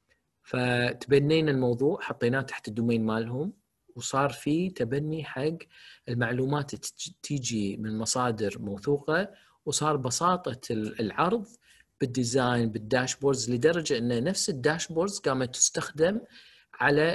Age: 40-59